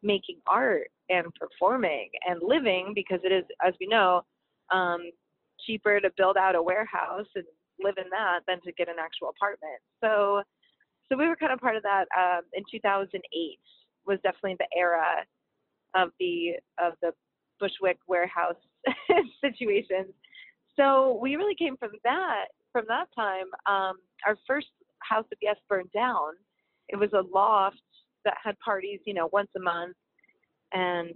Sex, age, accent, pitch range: female, 30-49, American, 180-225 Hz